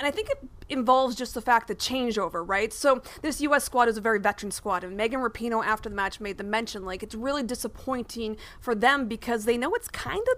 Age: 30-49